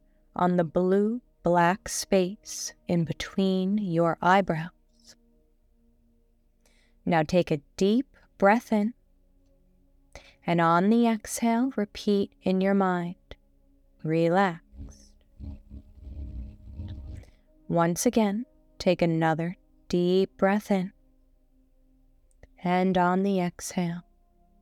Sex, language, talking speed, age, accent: female, English, 85 wpm, 20-39, American